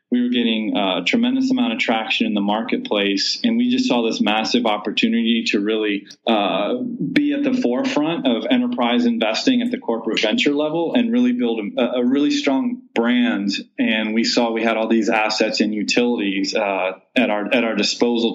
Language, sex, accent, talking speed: English, male, American, 185 wpm